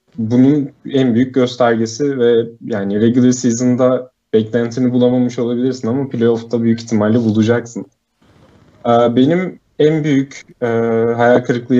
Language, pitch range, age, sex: Turkish, 110-125 Hz, 30-49, male